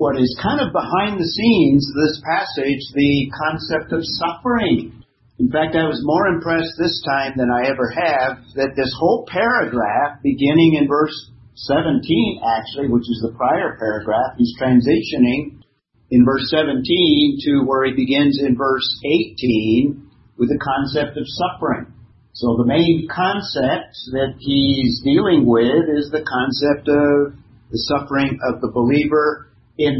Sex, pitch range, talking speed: male, 120-155 Hz, 150 wpm